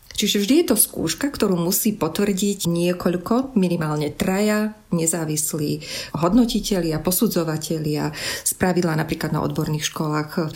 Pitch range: 160-195 Hz